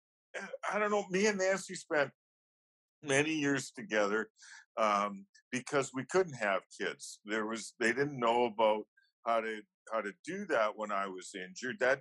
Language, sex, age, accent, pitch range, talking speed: English, male, 50-69, American, 105-135 Hz, 165 wpm